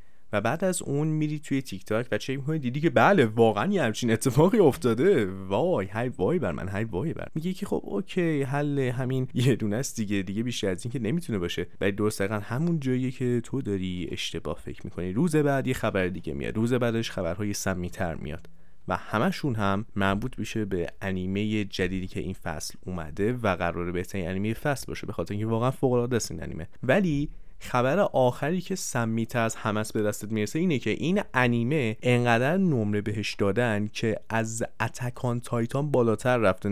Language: Persian